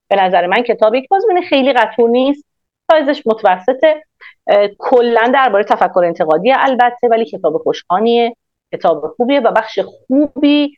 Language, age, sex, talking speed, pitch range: Persian, 40-59, female, 135 wpm, 170-260 Hz